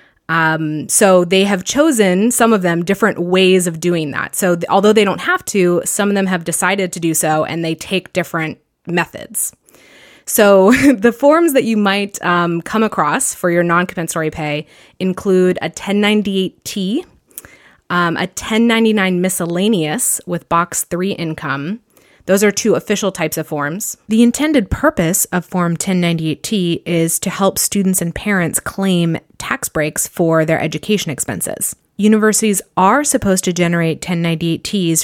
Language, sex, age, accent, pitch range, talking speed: English, female, 20-39, American, 165-200 Hz, 150 wpm